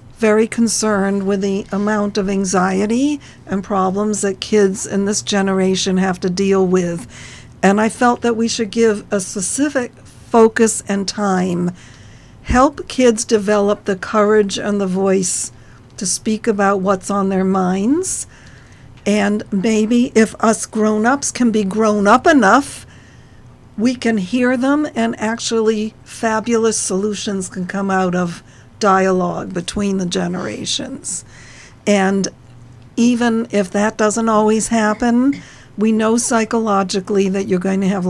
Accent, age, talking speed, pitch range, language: American, 60-79, 135 wpm, 190-225 Hz, English